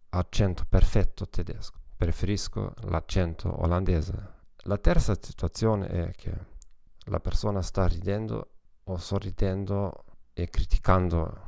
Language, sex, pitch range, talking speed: Italian, male, 90-105 Hz, 100 wpm